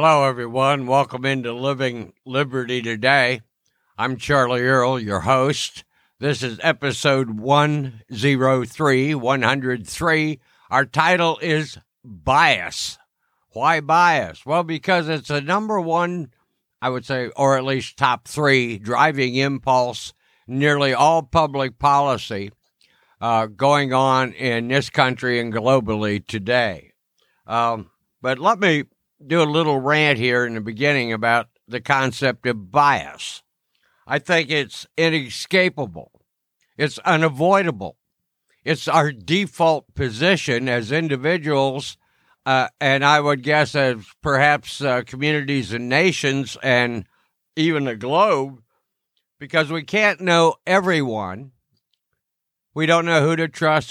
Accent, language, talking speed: American, English, 120 wpm